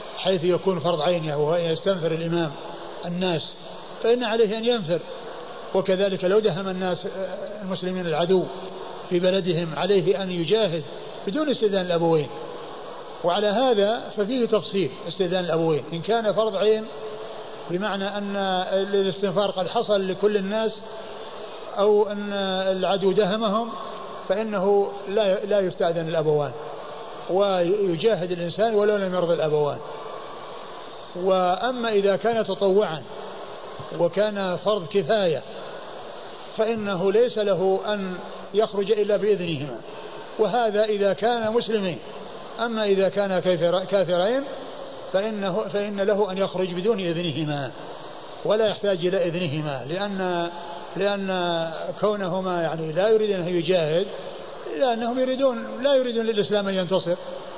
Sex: male